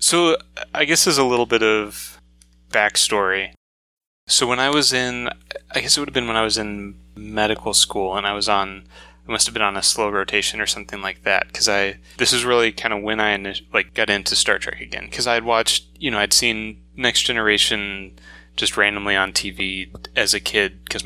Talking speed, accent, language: 210 wpm, American, English